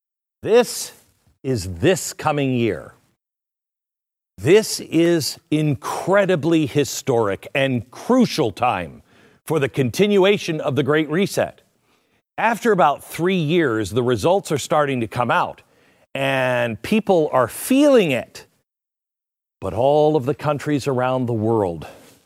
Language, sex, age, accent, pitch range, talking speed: English, male, 50-69, American, 125-180 Hz, 115 wpm